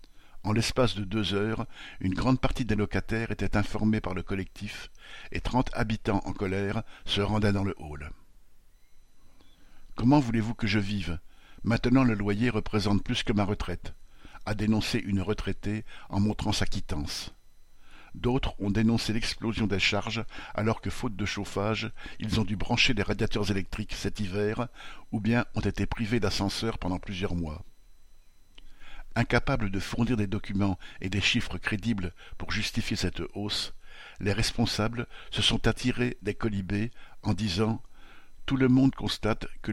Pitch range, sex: 100-115 Hz, male